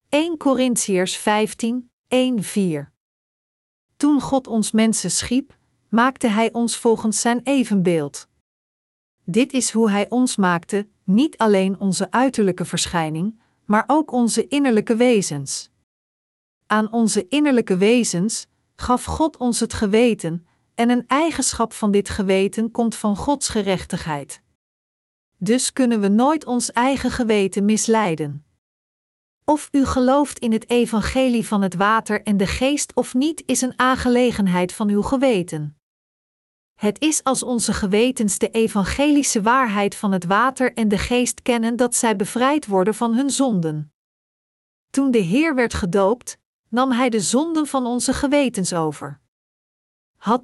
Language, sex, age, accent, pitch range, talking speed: Dutch, female, 50-69, Dutch, 200-255 Hz, 135 wpm